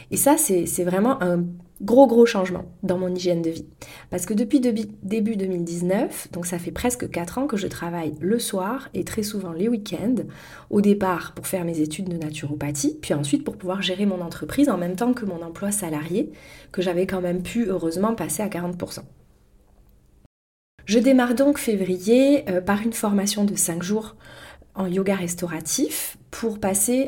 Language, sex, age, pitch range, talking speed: French, female, 30-49, 175-225 Hz, 185 wpm